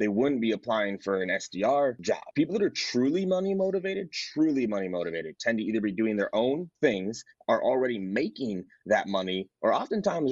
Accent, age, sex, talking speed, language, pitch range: American, 30-49, male, 185 wpm, English, 100-125 Hz